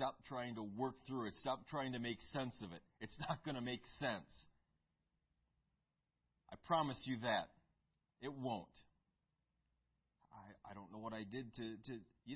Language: English